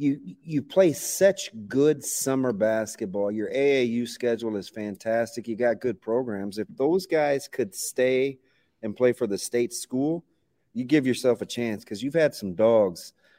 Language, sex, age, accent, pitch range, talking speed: English, male, 40-59, American, 110-125 Hz, 165 wpm